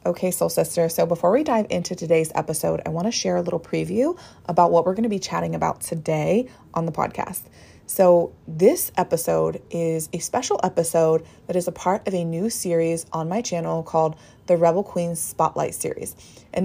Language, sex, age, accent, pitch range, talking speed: English, female, 20-39, American, 165-195 Hz, 195 wpm